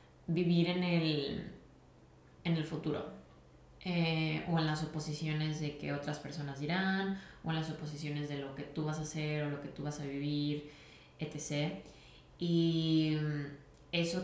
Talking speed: 155 wpm